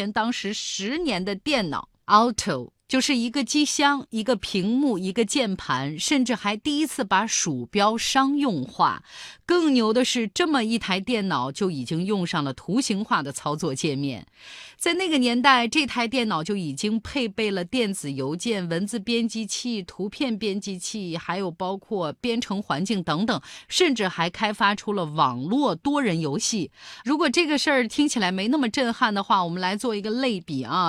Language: Chinese